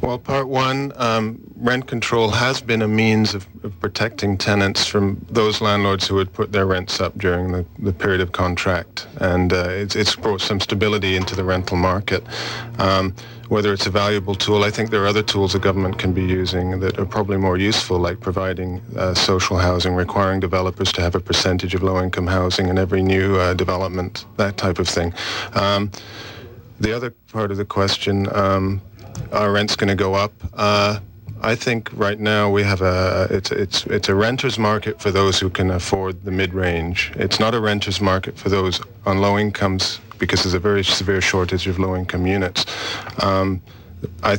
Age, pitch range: 40-59, 95-105 Hz